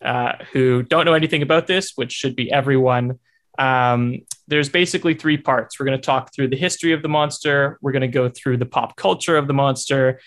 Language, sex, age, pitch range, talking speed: English, male, 20-39, 125-150 Hz, 215 wpm